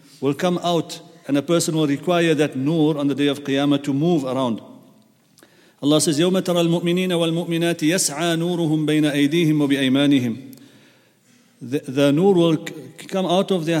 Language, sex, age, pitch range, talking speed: English, male, 40-59, 145-170 Hz, 125 wpm